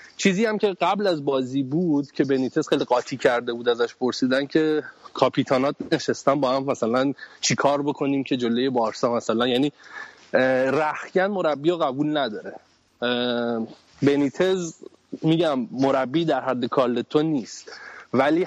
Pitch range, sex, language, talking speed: 135-170 Hz, male, Persian, 135 wpm